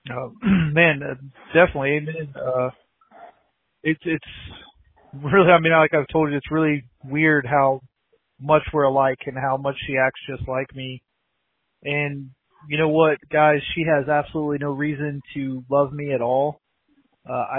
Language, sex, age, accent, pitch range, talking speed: English, male, 30-49, American, 135-155 Hz, 155 wpm